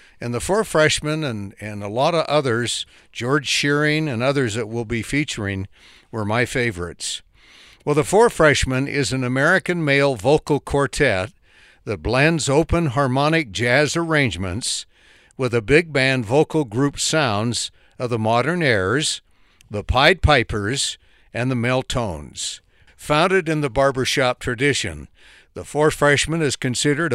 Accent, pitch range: American, 120-155 Hz